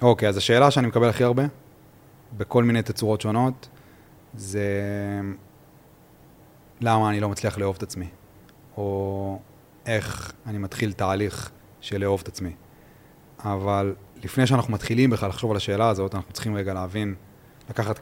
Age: 30-49